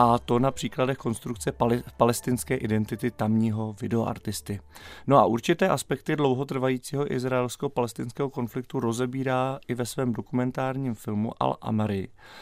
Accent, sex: native, male